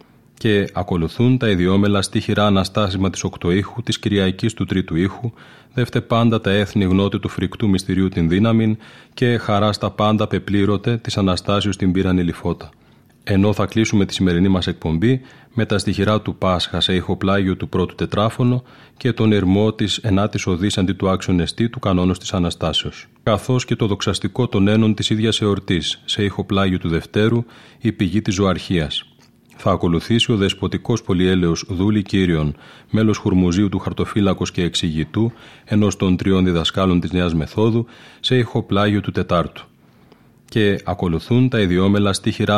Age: 30-49